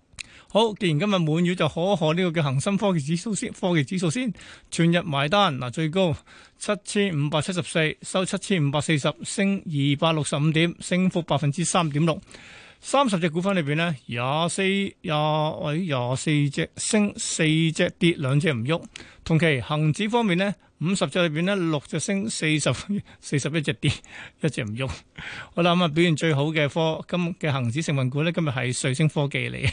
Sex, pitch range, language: male, 145-190 Hz, Chinese